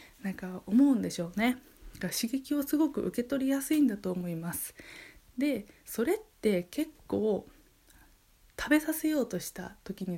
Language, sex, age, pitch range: Japanese, female, 20-39, 195-285 Hz